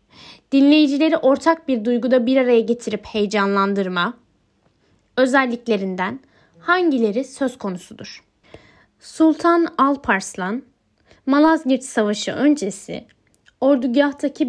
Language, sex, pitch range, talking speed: Turkish, female, 220-285 Hz, 75 wpm